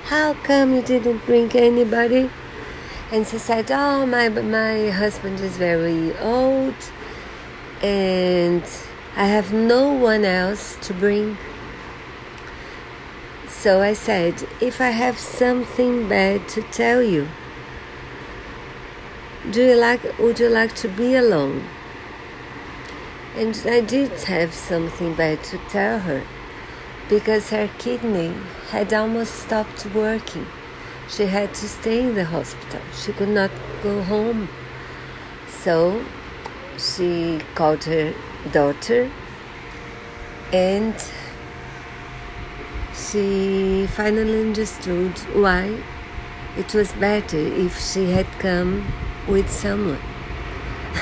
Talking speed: 105 wpm